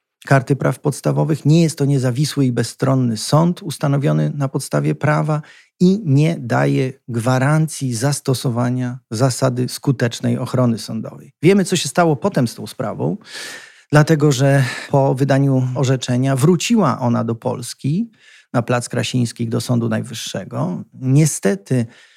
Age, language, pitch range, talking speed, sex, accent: 40-59, Polish, 120-150 Hz, 125 wpm, male, native